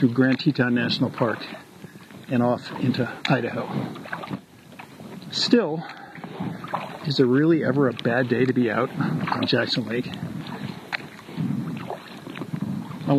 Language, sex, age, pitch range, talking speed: English, male, 50-69, 120-170 Hz, 110 wpm